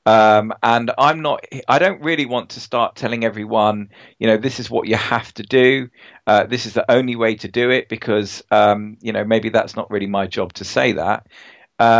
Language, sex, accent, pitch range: English, male, British, 110-125 Hz